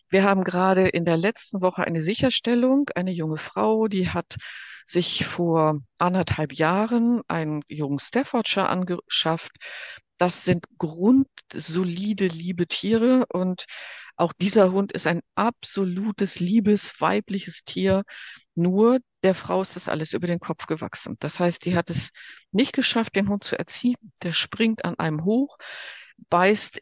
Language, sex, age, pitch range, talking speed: German, female, 50-69, 170-215 Hz, 145 wpm